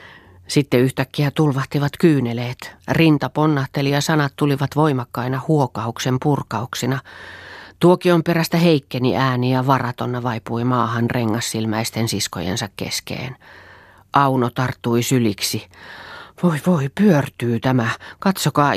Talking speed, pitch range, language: 100 wpm, 115-145 Hz, Finnish